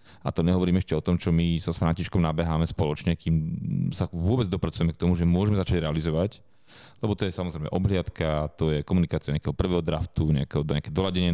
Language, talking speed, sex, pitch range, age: Slovak, 190 wpm, male, 85-105 Hz, 30-49